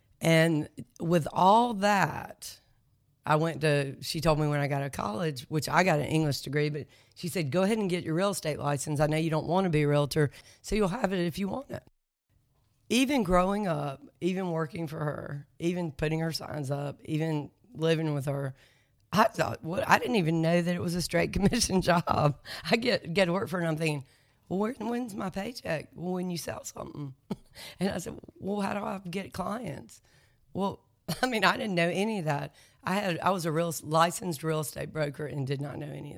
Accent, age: American, 40-59